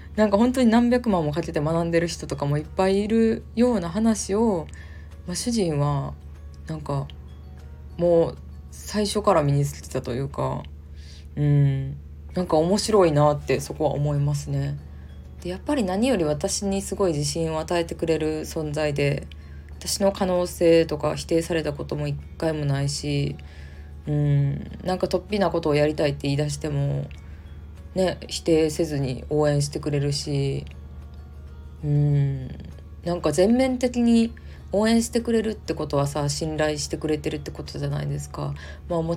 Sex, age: female, 20-39